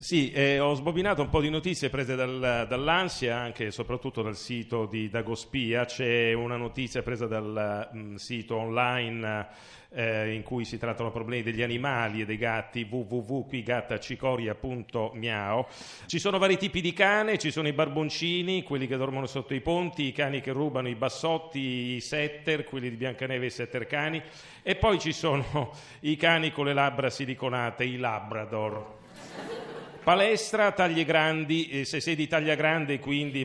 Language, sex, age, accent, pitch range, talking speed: Italian, male, 40-59, native, 120-150 Hz, 165 wpm